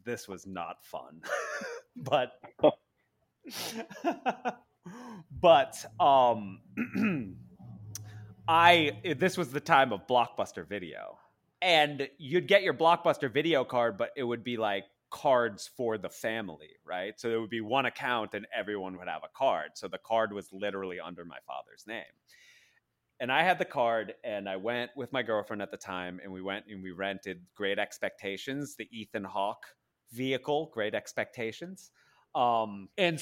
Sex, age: male, 30-49